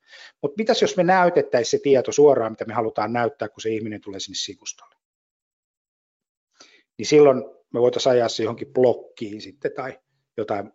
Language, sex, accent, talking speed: Finnish, male, native, 155 wpm